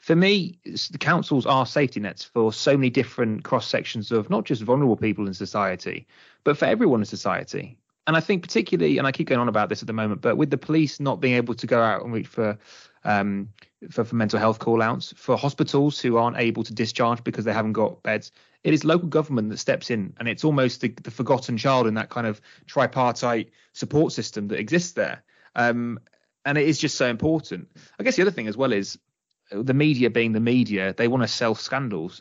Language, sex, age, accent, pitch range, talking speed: English, male, 20-39, British, 110-135 Hz, 220 wpm